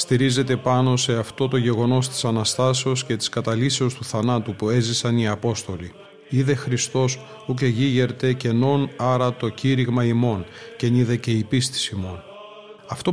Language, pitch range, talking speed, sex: Greek, 115-140 Hz, 155 wpm, male